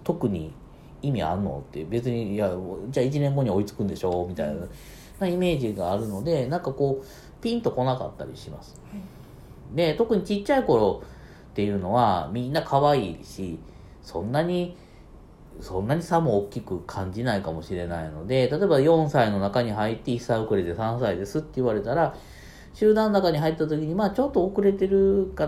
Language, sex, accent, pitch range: Japanese, male, native, 100-165 Hz